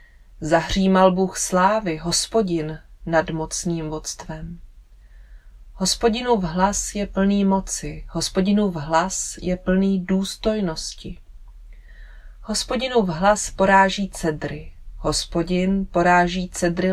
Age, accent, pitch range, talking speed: 30-49, native, 165-205 Hz, 95 wpm